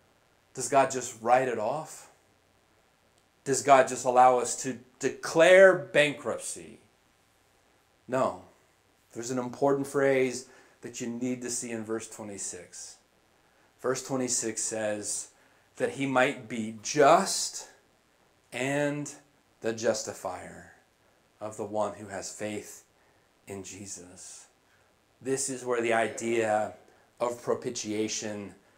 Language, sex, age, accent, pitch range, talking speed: English, male, 30-49, American, 110-130 Hz, 110 wpm